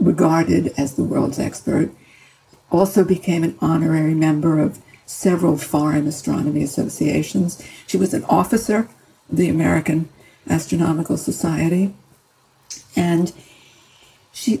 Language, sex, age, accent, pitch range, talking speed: English, female, 60-79, American, 165-200 Hz, 105 wpm